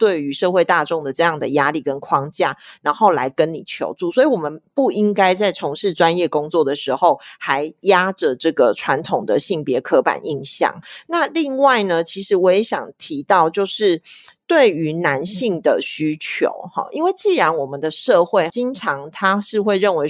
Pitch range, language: 165-235 Hz, Chinese